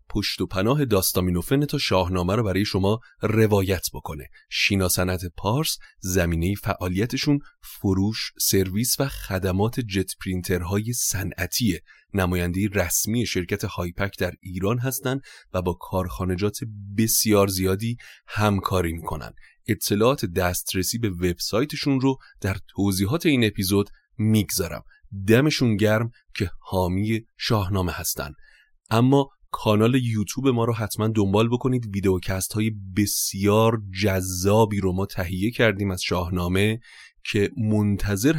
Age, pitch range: 30-49, 95-115 Hz